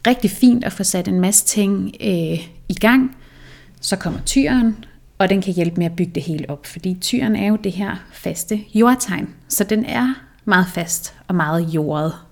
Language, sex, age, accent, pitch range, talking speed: Danish, female, 30-49, native, 175-220 Hz, 195 wpm